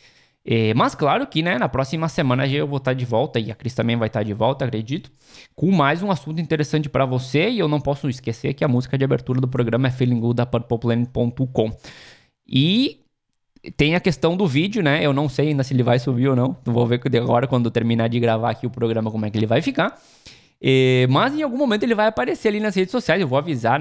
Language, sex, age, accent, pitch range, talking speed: Portuguese, male, 20-39, Brazilian, 115-150 Hz, 230 wpm